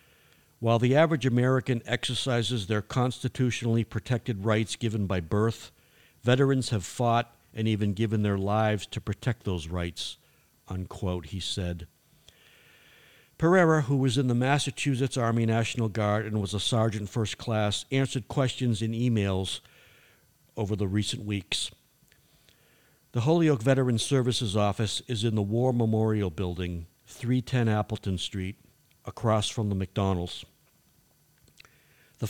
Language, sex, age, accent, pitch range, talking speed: English, male, 60-79, American, 100-125 Hz, 130 wpm